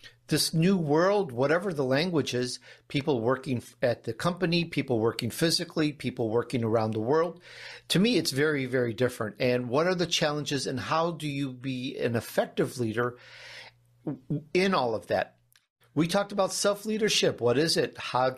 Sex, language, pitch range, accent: male, English, 120-160 Hz, American